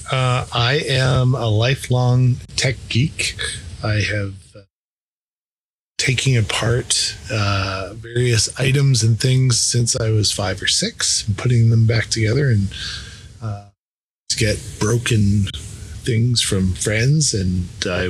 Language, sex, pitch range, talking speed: English, male, 100-125 Hz, 130 wpm